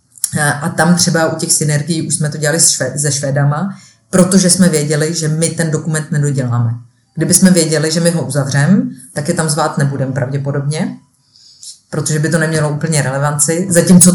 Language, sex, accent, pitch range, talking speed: Czech, female, native, 140-160 Hz, 170 wpm